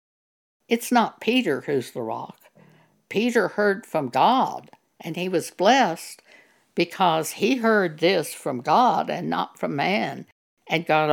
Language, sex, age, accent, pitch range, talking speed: English, female, 60-79, American, 150-215 Hz, 140 wpm